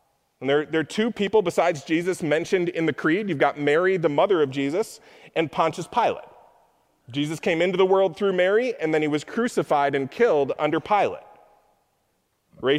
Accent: American